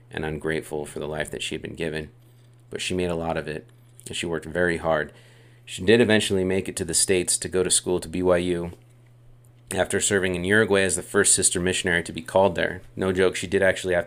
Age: 30-49